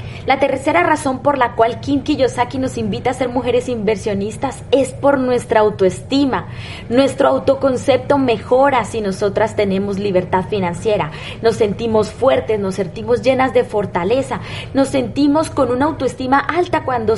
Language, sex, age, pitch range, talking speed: Spanish, female, 20-39, 220-285 Hz, 145 wpm